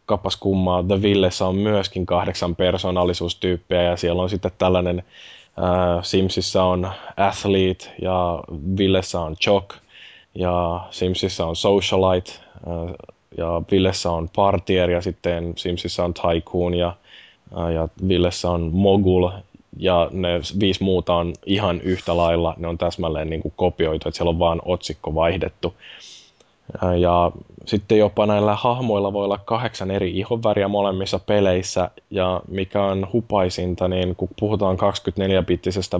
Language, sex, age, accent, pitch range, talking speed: Finnish, male, 20-39, native, 85-95 Hz, 135 wpm